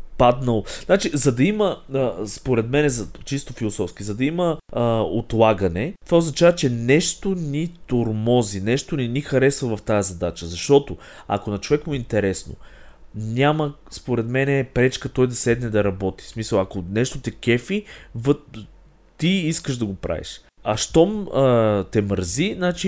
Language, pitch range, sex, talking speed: Bulgarian, 100-140 Hz, male, 160 wpm